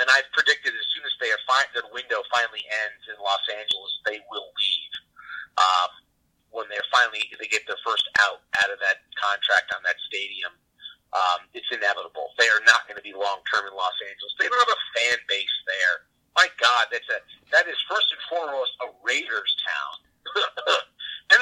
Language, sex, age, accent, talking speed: English, male, 30-49, American, 195 wpm